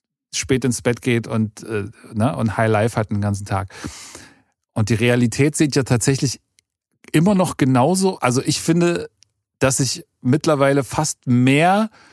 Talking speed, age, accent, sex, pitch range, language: 155 wpm, 40-59, German, male, 120-150 Hz, German